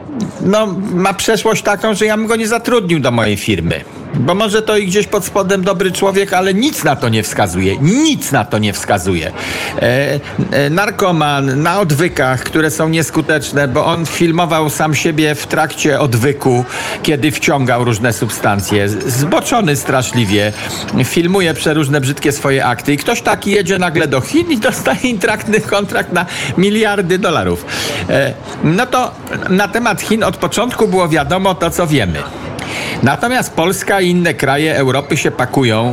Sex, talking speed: male, 155 wpm